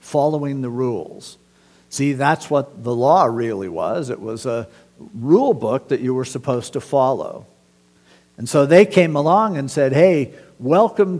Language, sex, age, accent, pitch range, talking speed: English, male, 50-69, American, 120-165 Hz, 160 wpm